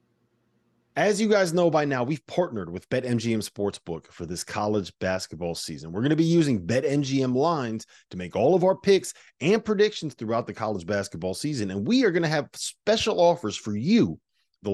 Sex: male